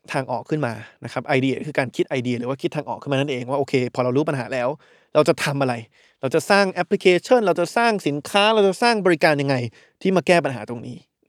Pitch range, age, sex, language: 135-175 Hz, 20-39, male, Thai